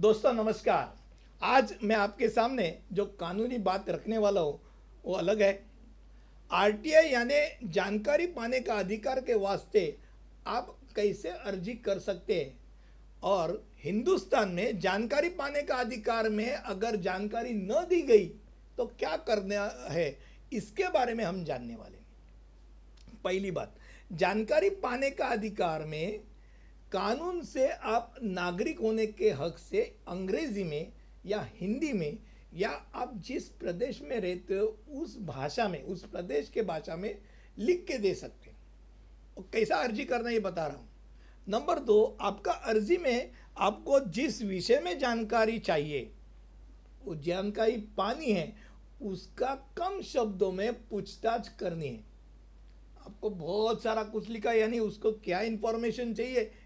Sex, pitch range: male, 195-250 Hz